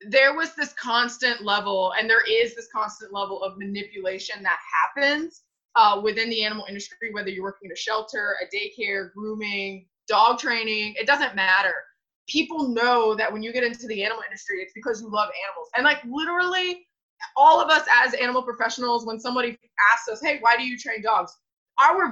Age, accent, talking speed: 20-39, American, 185 wpm